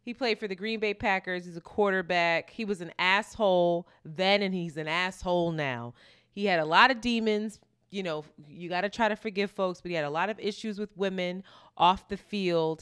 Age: 20-39